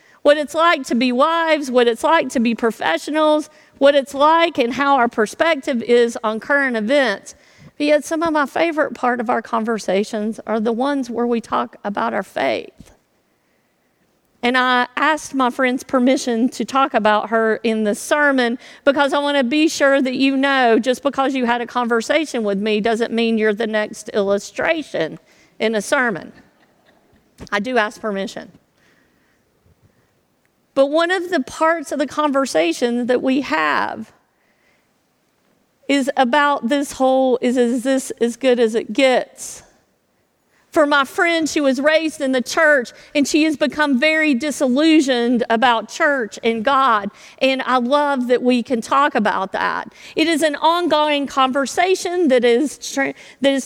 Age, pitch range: 50-69, 240-295 Hz